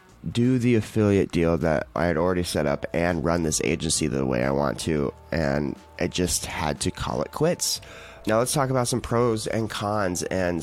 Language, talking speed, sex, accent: English, 205 wpm, male, American